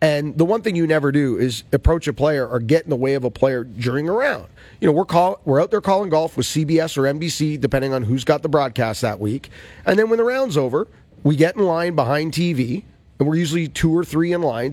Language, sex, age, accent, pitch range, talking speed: English, male, 40-59, American, 130-185 Hz, 255 wpm